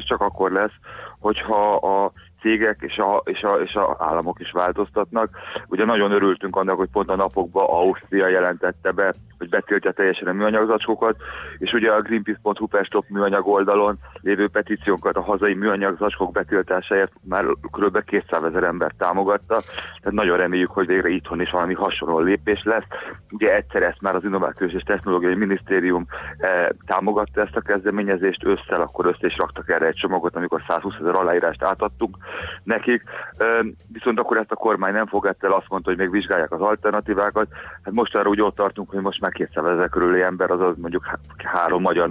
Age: 30-49